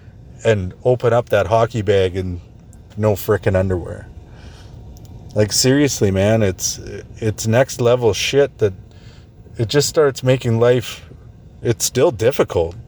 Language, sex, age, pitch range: English, male, 30-49, 100-120 Hz